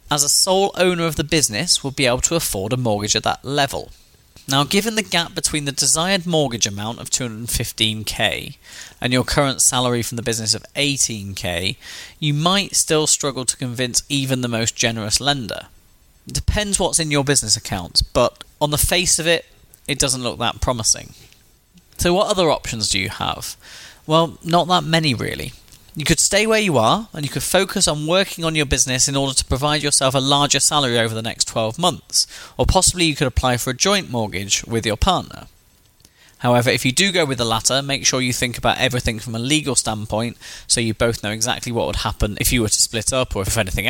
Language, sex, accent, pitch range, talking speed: English, male, British, 115-155 Hz, 210 wpm